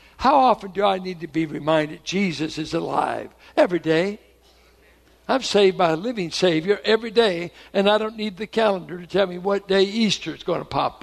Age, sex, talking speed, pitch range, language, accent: 60-79, male, 200 wpm, 150-200 Hz, English, American